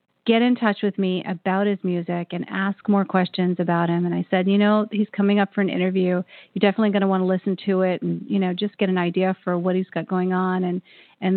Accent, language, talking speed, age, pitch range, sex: American, English, 260 wpm, 40-59, 180-205 Hz, female